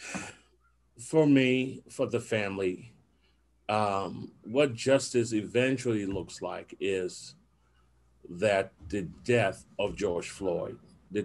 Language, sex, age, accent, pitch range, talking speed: English, male, 40-59, American, 145-225 Hz, 100 wpm